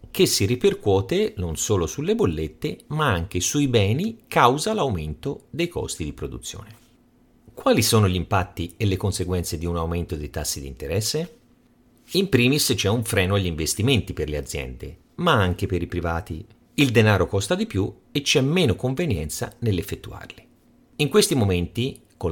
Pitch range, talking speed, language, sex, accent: 90-145 Hz, 160 wpm, Italian, male, native